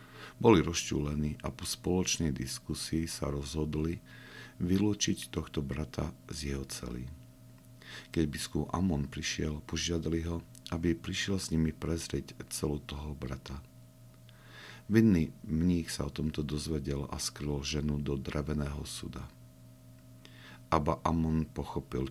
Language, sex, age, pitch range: Slovak, male, 50-69, 65-85 Hz